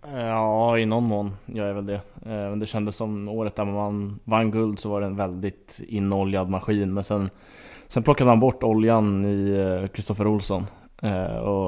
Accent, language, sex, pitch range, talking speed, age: Norwegian, Swedish, male, 95-105 Hz, 180 wpm, 20-39